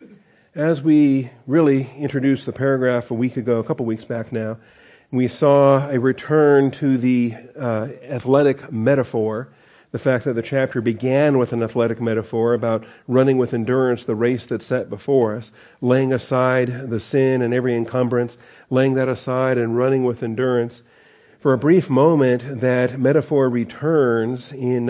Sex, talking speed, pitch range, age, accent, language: male, 160 wpm, 120-135 Hz, 50-69, American, English